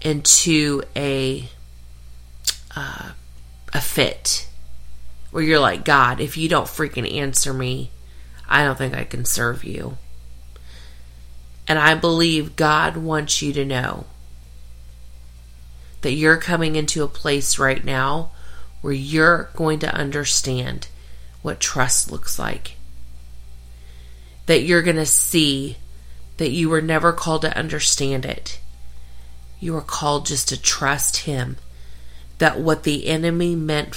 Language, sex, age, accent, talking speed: English, female, 30-49, American, 125 wpm